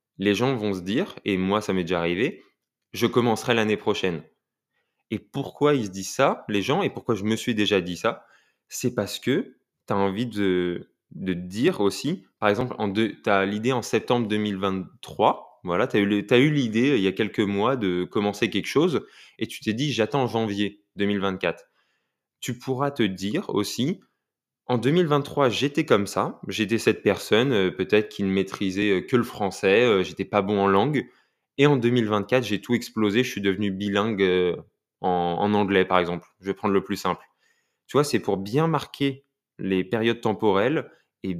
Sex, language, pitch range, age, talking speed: male, French, 100-130 Hz, 20-39, 185 wpm